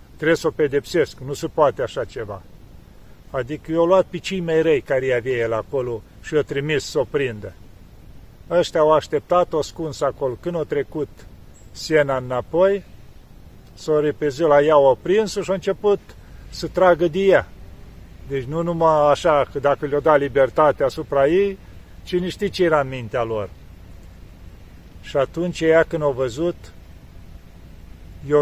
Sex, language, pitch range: male, Romanian, 120-170 Hz